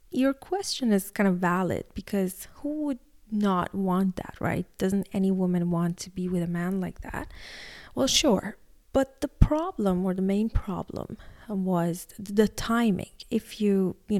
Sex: female